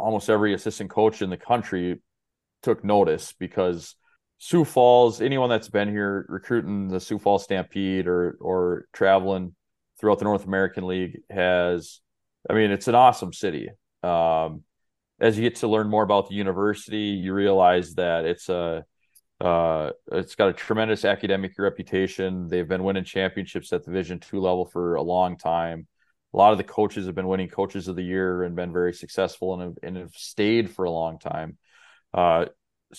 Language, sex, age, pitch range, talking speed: English, male, 30-49, 90-105 Hz, 175 wpm